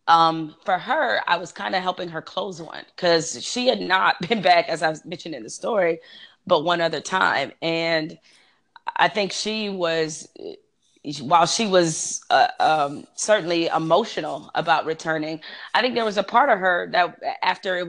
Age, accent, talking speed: 30-49, American, 175 wpm